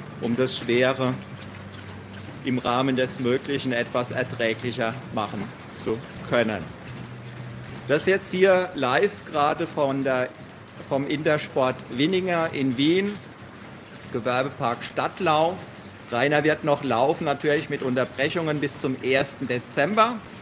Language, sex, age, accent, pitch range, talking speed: German, male, 50-69, German, 125-150 Hz, 110 wpm